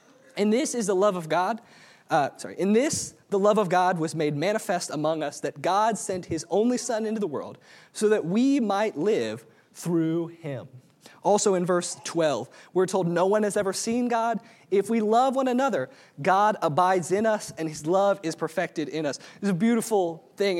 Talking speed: 200 wpm